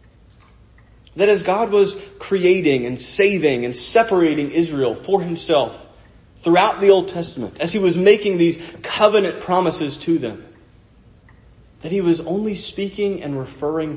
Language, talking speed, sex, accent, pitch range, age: English, 140 wpm, male, American, 135-185 Hz, 30-49